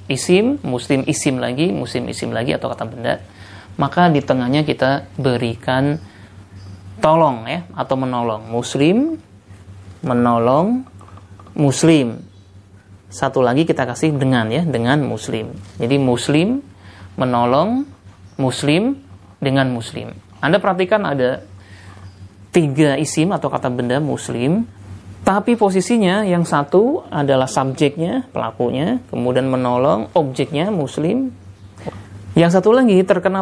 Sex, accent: male, native